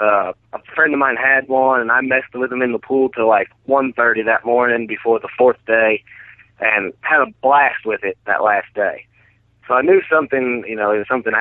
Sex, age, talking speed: male, 30-49, 230 wpm